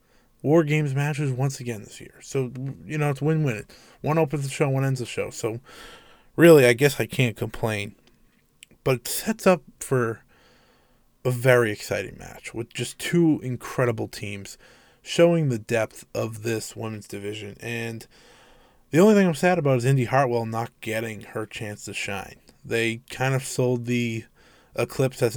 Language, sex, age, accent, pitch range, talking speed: English, male, 20-39, American, 115-135 Hz, 170 wpm